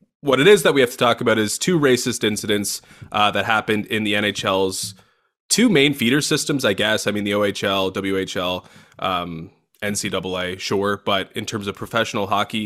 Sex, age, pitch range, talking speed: male, 20-39, 105-125 Hz, 185 wpm